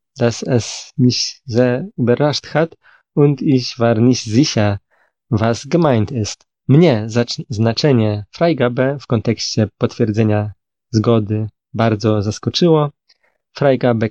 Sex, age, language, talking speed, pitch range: male, 20-39, Polish, 100 wpm, 110-135 Hz